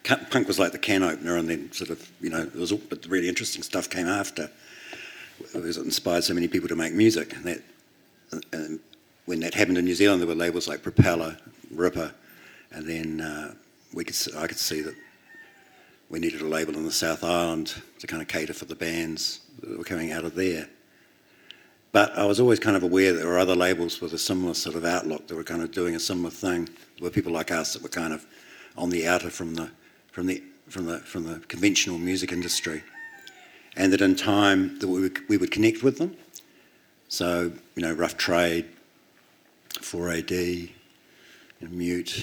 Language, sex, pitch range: English, male, 85-95 Hz